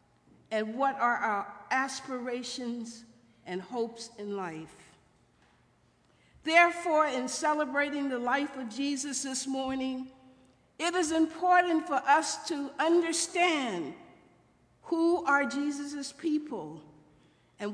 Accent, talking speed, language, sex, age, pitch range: American, 100 wpm, English, female, 60-79, 205-285 Hz